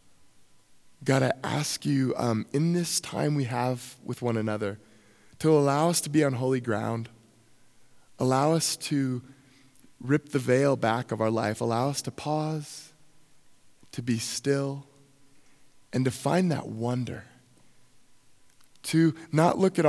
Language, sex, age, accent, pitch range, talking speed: English, male, 20-39, American, 115-150 Hz, 140 wpm